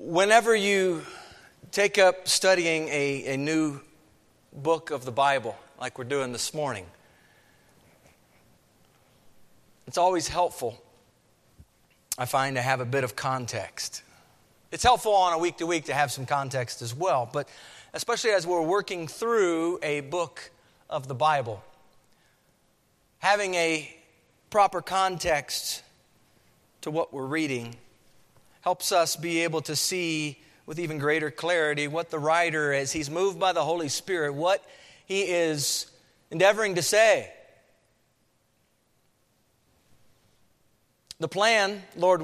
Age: 40-59